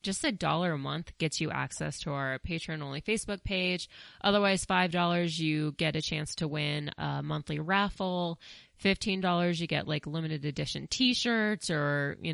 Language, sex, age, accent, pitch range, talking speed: English, female, 20-39, American, 150-180 Hz, 175 wpm